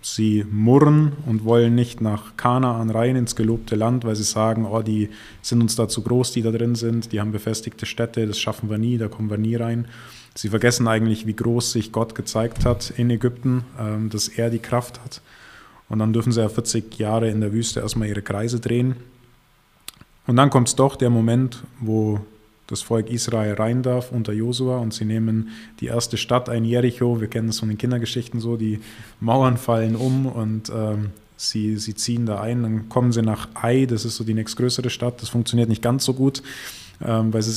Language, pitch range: German, 110-125 Hz